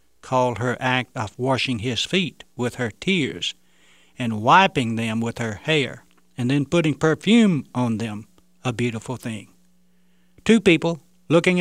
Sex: male